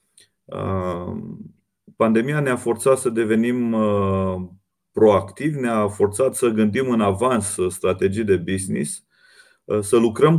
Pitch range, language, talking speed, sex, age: 100-120 Hz, Romanian, 100 wpm, male, 30-49